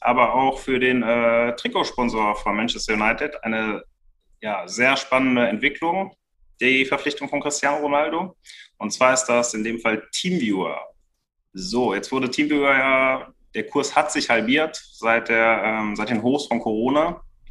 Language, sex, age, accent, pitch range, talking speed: German, male, 30-49, German, 110-130 Hz, 155 wpm